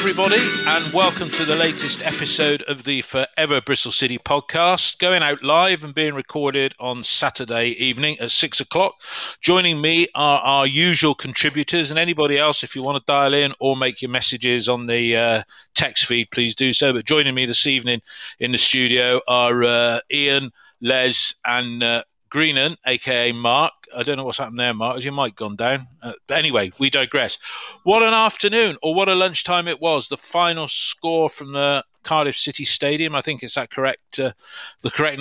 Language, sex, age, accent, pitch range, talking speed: English, male, 40-59, British, 130-160 Hz, 190 wpm